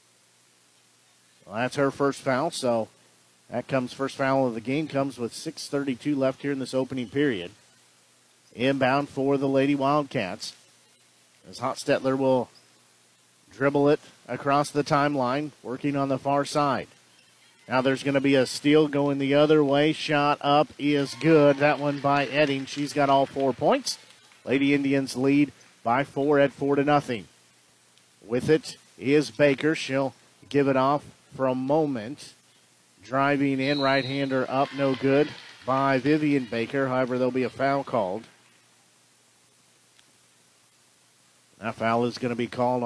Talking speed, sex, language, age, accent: 150 wpm, male, English, 50-69, American